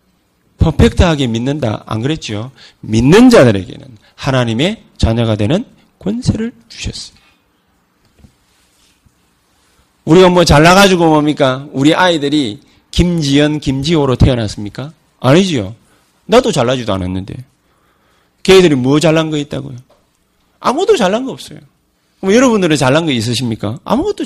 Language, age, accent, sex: Korean, 40-59, native, male